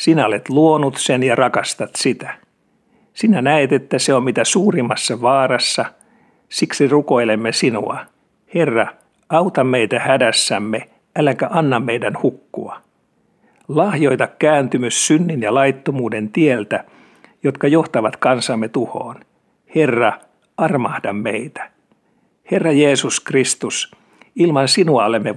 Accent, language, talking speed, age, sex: native, Finnish, 105 wpm, 60-79, male